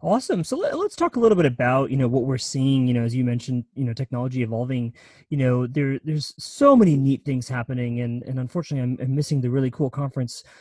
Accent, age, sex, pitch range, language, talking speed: American, 30-49, male, 125-145 Hz, English, 230 wpm